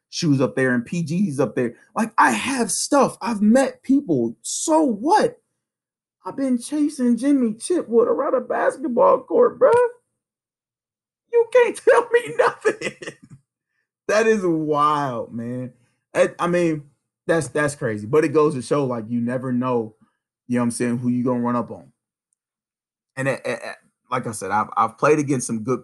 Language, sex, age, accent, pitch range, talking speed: English, male, 30-49, American, 115-170 Hz, 165 wpm